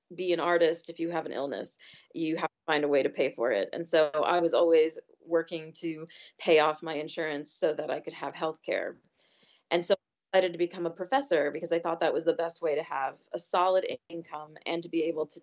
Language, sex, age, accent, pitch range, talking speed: English, female, 30-49, American, 165-205 Hz, 240 wpm